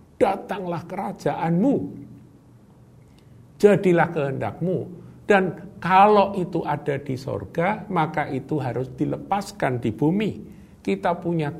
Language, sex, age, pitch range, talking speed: Indonesian, male, 50-69, 115-170 Hz, 95 wpm